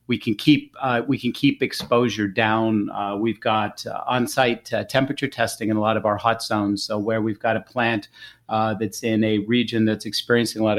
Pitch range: 105-115 Hz